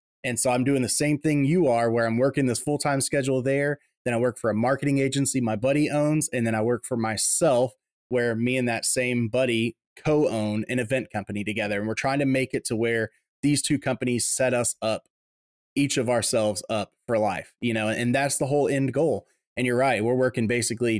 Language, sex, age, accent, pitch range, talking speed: English, male, 20-39, American, 115-140 Hz, 220 wpm